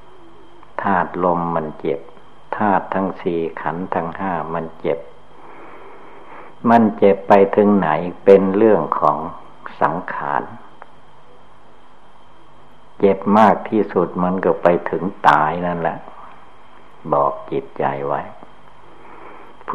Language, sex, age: Thai, male, 60-79